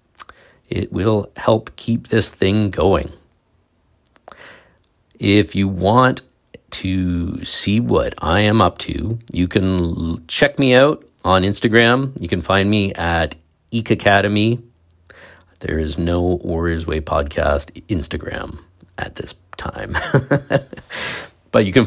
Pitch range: 85-115 Hz